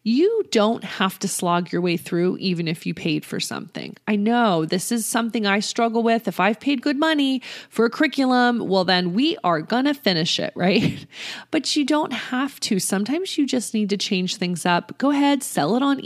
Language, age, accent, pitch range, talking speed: English, 30-49, American, 180-235 Hz, 215 wpm